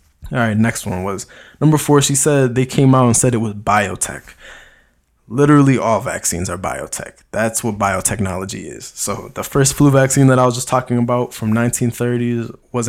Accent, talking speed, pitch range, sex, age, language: American, 185 wpm, 110-140 Hz, male, 20-39, English